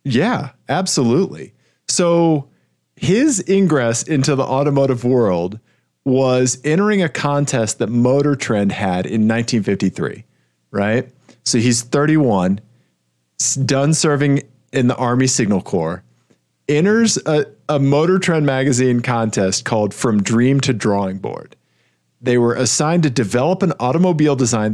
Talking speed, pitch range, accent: 125 wpm, 110-145 Hz, American